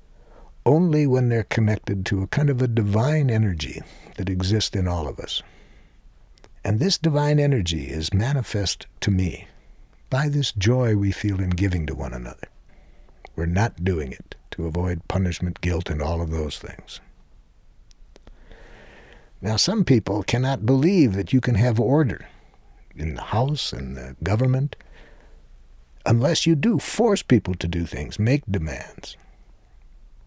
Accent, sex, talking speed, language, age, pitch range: American, male, 145 wpm, English, 60-79, 85-120 Hz